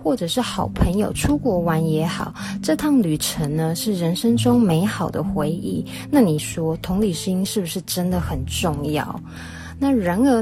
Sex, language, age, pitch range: female, Chinese, 20-39, 160-225 Hz